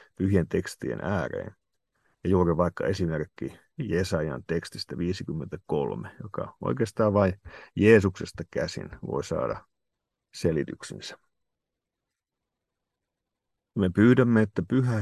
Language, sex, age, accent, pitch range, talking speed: Finnish, male, 50-69, native, 95-115 Hz, 90 wpm